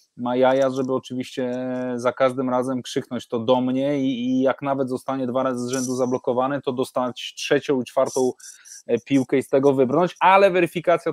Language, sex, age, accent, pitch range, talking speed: English, male, 20-39, Polish, 130-145 Hz, 175 wpm